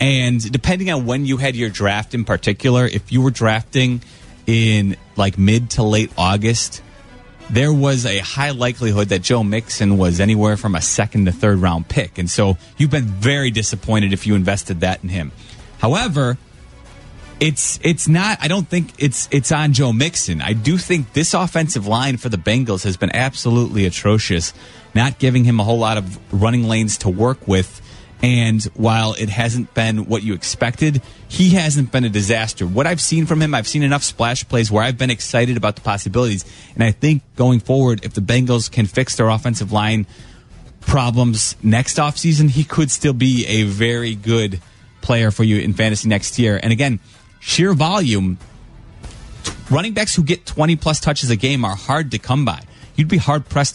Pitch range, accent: 105-135 Hz, American